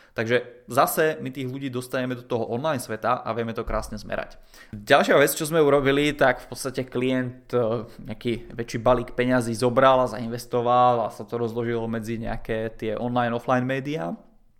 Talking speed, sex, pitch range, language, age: 170 wpm, male, 115-130 Hz, Czech, 20-39